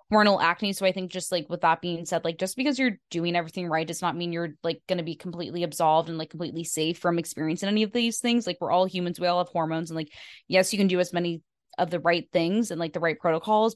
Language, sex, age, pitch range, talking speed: English, female, 20-39, 165-200 Hz, 275 wpm